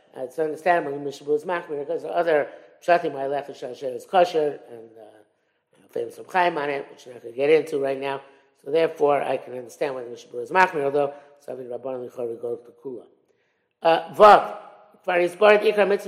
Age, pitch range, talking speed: 60-79, 150-200 Hz, 245 wpm